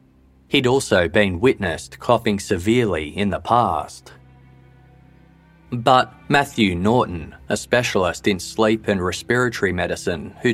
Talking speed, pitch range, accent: 115 wpm, 85-115 Hz, Australian